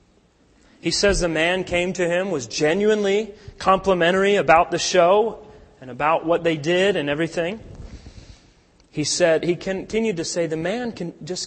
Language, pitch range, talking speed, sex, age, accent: English, 155-200 Hz, 150 wpm, male, 30-49, American